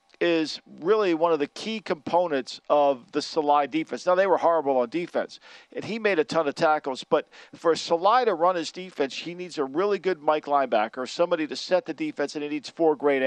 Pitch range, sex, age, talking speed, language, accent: 150-190 Hz, male, 50-69, 215 wpm, English, American